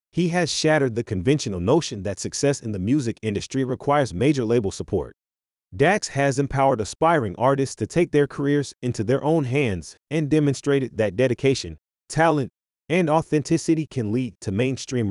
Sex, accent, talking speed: male, American, 160 wpm